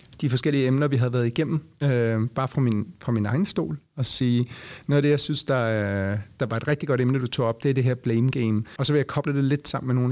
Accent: native